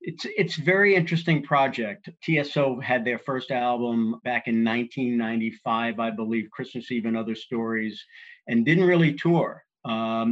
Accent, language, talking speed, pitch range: American, English, 145 wpm, 115-140 Hz